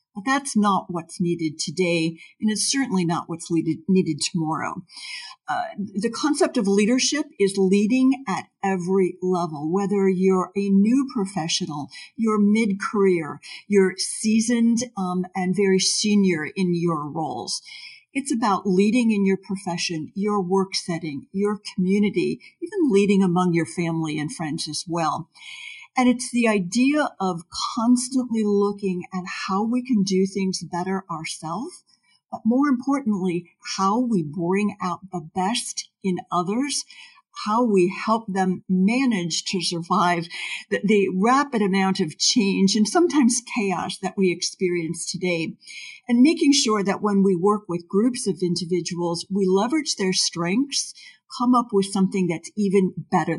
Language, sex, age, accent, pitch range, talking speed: English, female, 50-69, American, 180-225 Hz, 145 wpm